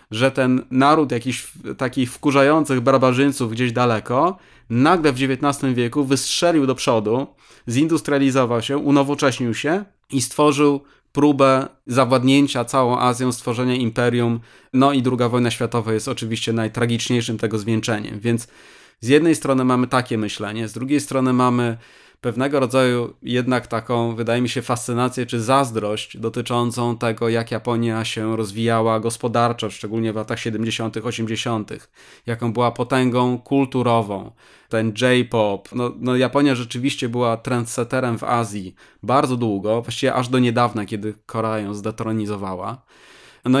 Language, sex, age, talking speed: Polish, male, 20-39, 130 wpm